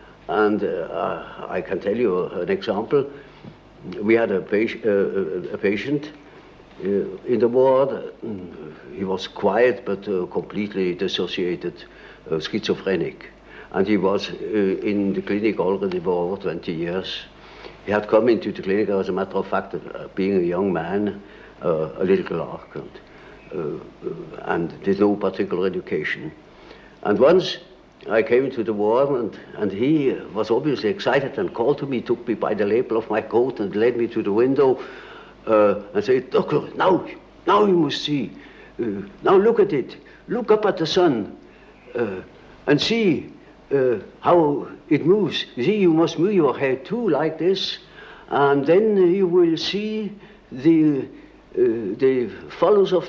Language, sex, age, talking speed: English, male, 60-79, 160 wpm